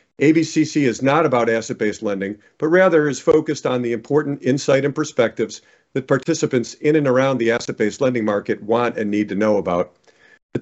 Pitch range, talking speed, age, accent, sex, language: 115-150 Hz, 180 wpm, 50-69, American, male, English